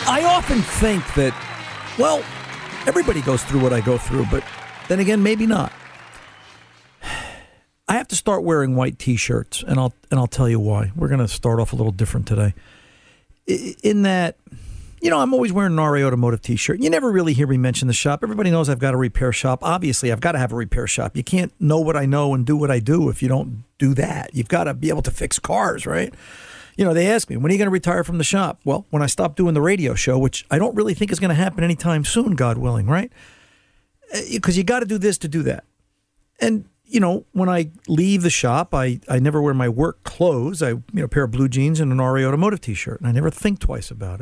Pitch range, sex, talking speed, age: 125-180 Hz, male, 240 wpm, 50-69